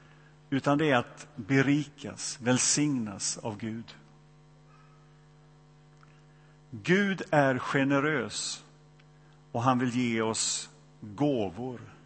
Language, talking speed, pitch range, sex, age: Swedish, 85 wpm, 125-150 Hz, male, 50-69